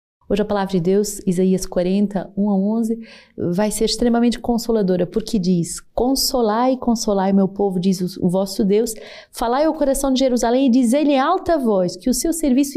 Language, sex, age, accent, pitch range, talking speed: Portuguese, female, 30-49, Brazilian, 190-245 Hz, 185 wpm